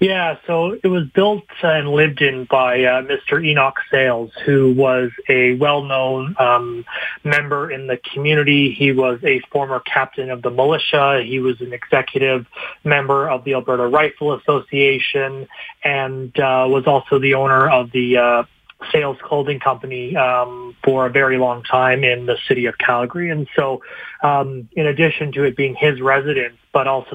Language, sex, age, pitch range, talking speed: English, male, 30-49, 130-145 Hz, 165 wpm